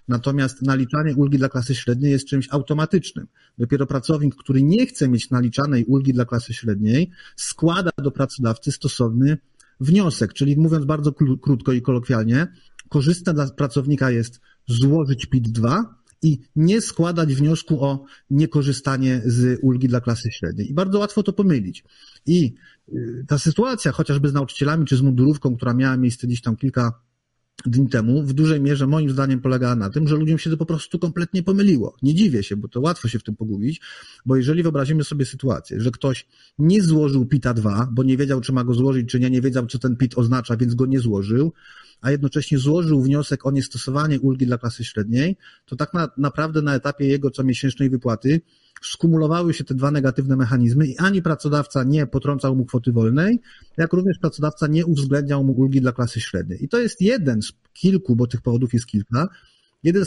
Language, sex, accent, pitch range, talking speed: Polish, male, native, 125-155 Hz, 180 wpm